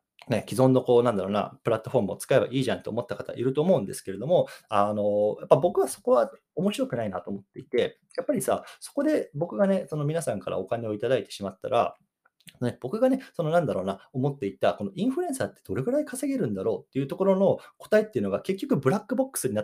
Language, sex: Japanese, male